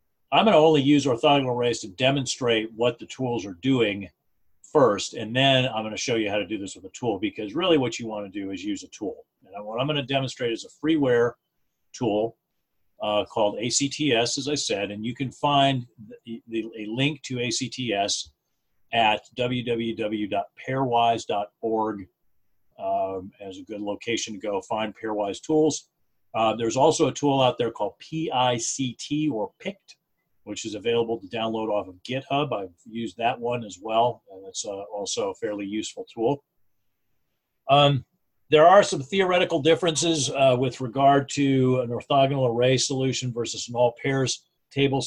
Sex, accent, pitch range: male, American, 115-145 Hz